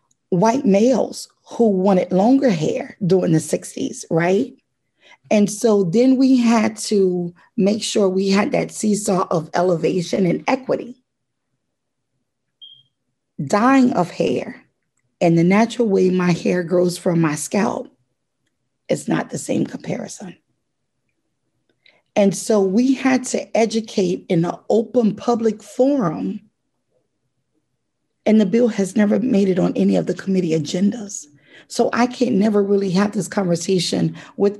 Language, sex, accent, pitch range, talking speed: English, female, American, 180-235 Hz, 135 wpm